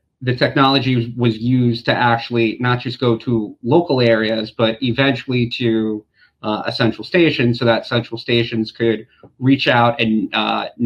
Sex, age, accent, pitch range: male, 40-59, American, 110-125 Hz